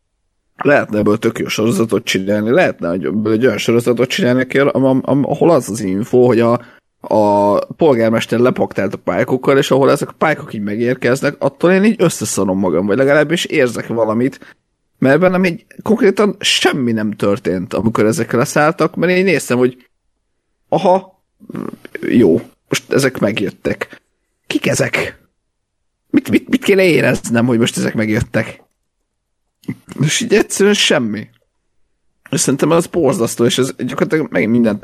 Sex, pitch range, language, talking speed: male, 105-155 Hz, Hungarian, 145 wpm